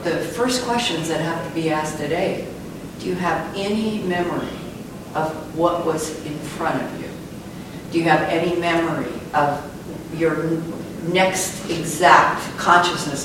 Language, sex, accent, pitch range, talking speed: English, female, American, 145-175 Hz, 140 wpm